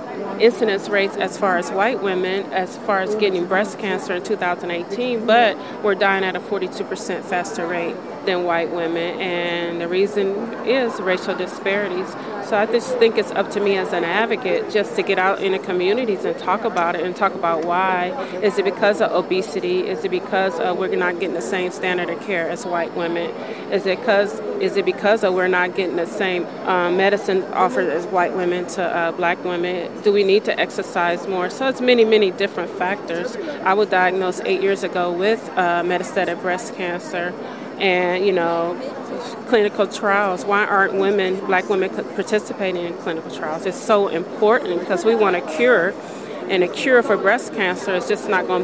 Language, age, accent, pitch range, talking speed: English, 30-49, American, 180-210 Hz, 190 wpm